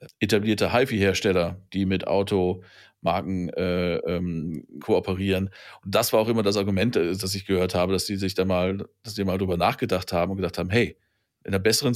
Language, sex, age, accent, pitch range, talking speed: German, male, 40-59, German, 105-135 Hz, 185 wpm